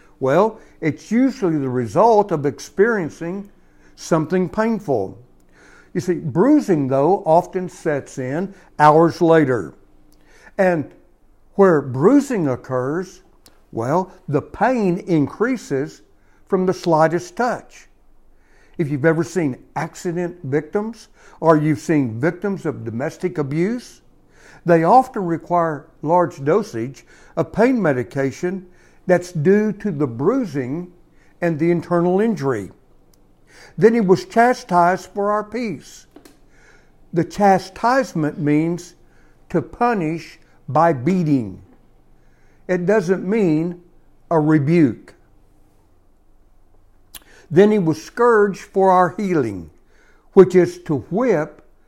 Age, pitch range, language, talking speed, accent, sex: 60-79, 140-185 Hz, English, 105 wpm, American, male